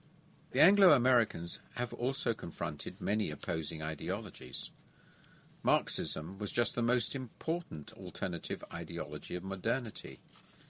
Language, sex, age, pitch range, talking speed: English, male, 50-69, 95-125 Hz, 100 wpm